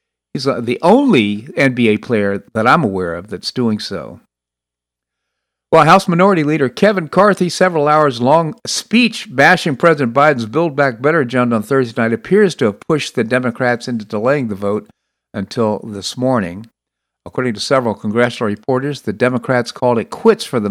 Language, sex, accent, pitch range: English, male, American, 115-145 Hz